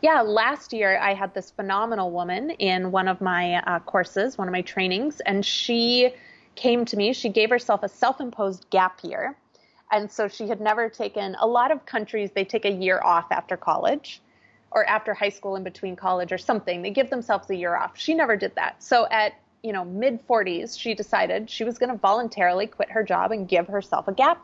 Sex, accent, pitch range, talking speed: female, American, 190-240 Hz, 215 wpm